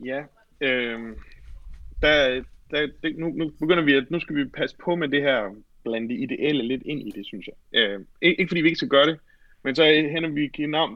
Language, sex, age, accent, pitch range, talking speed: Danish, male, 30-49, native, 125-165 Hz, 180 wpm